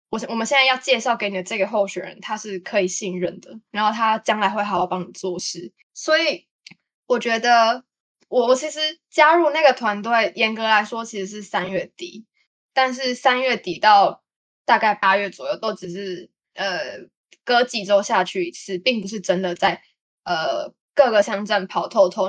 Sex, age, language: female, 10-29, Chinese